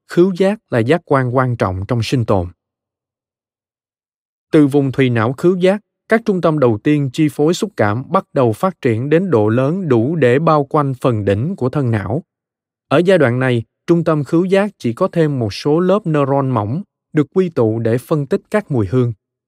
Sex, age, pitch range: male, 20-39, 115-160 Hz